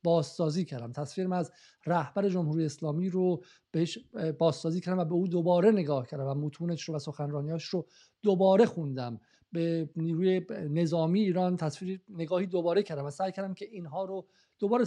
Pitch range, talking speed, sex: 160-190 Hz, 160 wpm, male